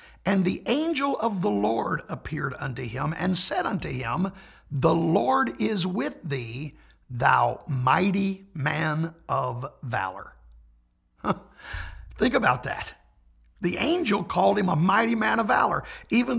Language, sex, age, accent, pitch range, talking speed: English, male, 60-79, American, 120-185 Hz, 130 wpm